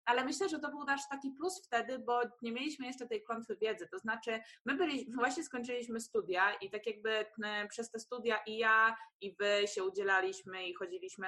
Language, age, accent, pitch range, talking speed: Polish, 20-39, native, 215-260 Hz, 195 wpm